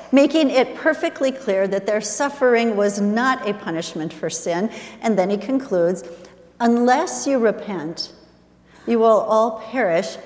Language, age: English, 50-69